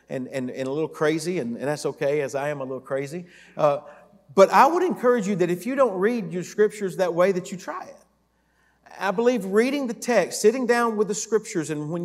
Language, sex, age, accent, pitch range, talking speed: English, male, 40-59, American, 145-200 Hz, 235 wpm